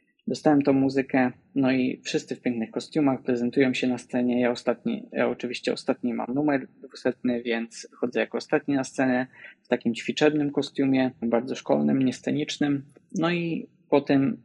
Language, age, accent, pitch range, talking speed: Polish, 20-39, native, 125-145 Hz, 155 wpm